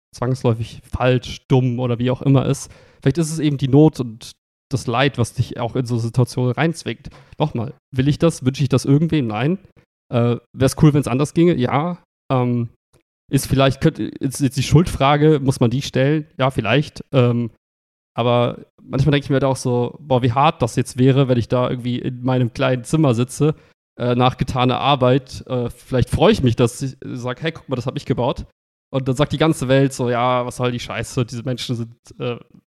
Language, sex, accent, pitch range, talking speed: German, male, German, 120-140 Hz, 220 wpm